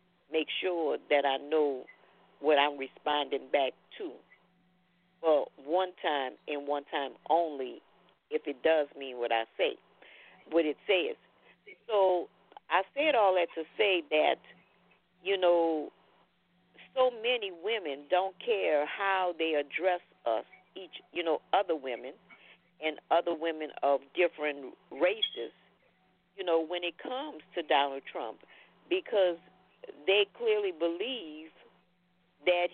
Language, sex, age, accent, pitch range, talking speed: English, female, 50-69, American, 165-255 Hz, 130 wpm